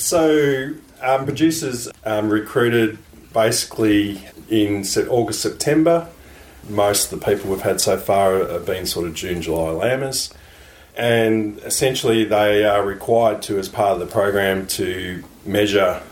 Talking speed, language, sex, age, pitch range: 140 wpm, English, male, 40-59, 85-105 Hz